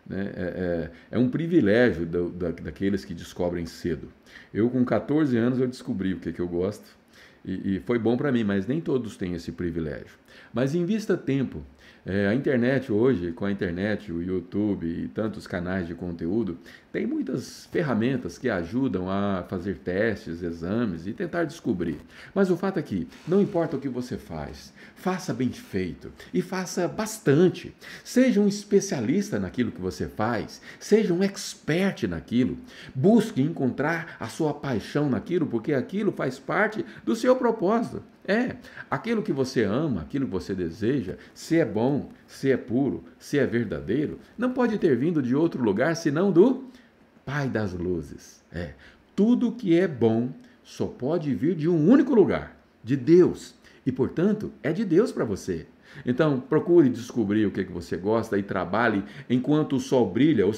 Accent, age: Brazilian, 50-69